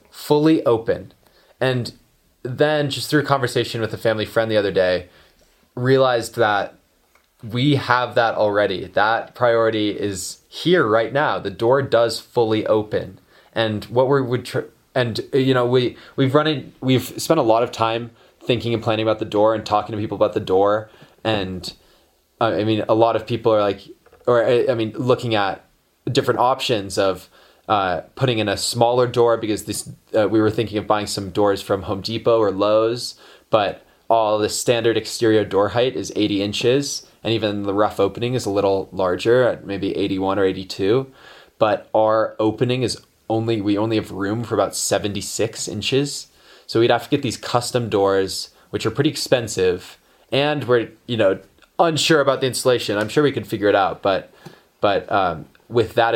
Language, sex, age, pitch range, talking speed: English, male, 20-39, 105-125 Hz, 185 wpm